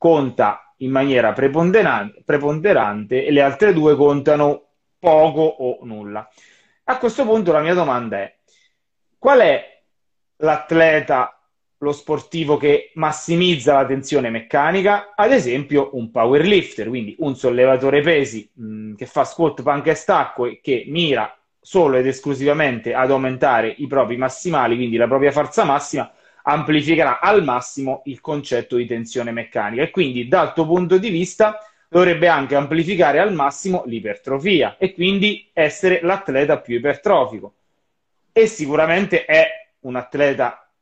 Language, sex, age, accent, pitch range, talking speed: Italian, male, 30-49, native, 130-175 Hz, 135 wpm